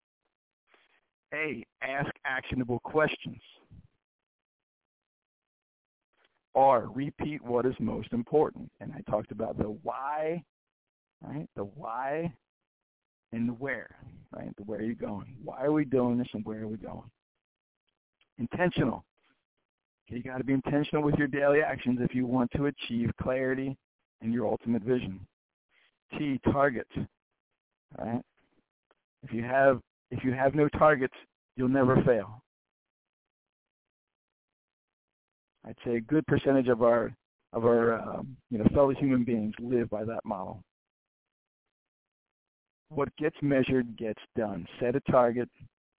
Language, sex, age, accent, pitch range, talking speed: English, male, 50-69, American, 115-135 Hz, 130 wpm